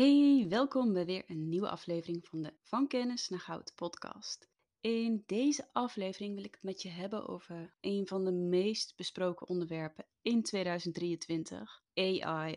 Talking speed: 160 wpm